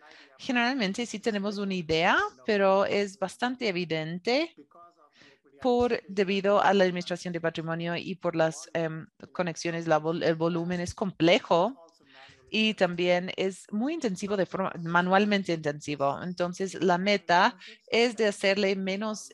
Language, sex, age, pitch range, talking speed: English, female, 30-49, 170-210 Hz, 135 wpm